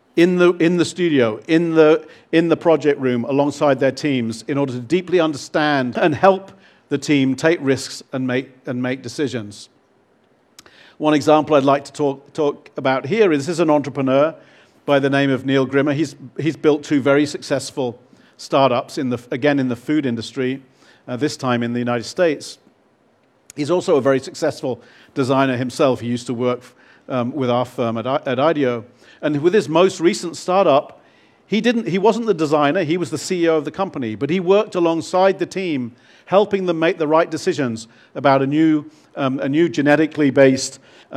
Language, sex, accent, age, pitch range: Chinese, male, British, 50-69, 130-170 Hz